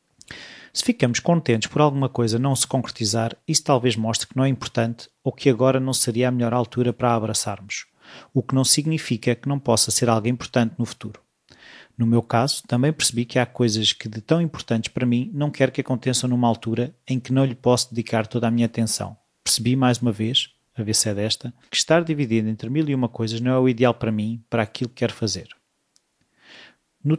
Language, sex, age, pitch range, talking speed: Portuguese, male, 30-49, 115-135 Hz, 215 wpm